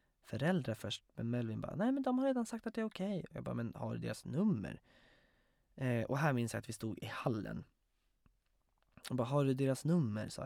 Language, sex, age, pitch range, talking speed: Swedish, male, 20-39, 110-150 Hz, 230 wpm